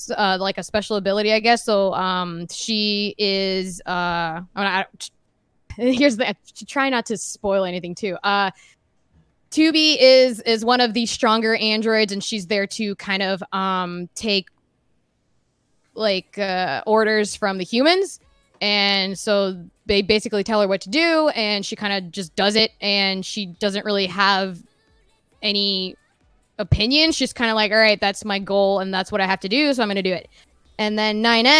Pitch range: 195-230 Hz